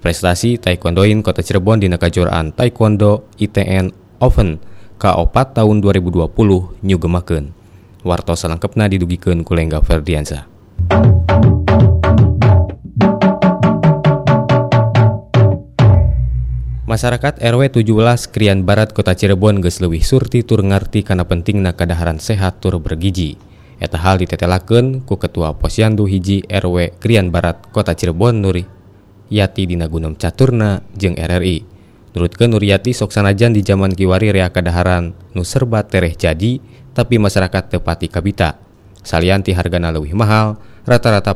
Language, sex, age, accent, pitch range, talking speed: Indonesian, male, 20-39, native, 90-105 Hz, 110 wpm